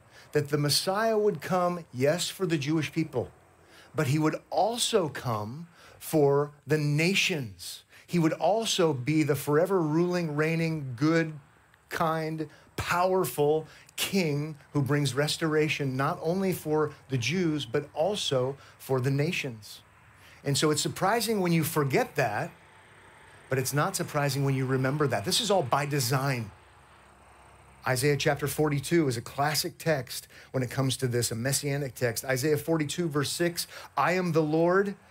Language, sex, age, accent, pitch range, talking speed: English, male, 40-59, American, 135-170 Hz, 150 wpm